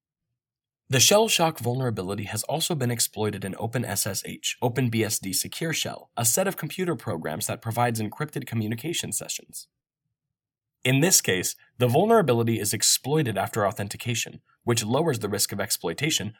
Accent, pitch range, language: American, 110-140 Hz, English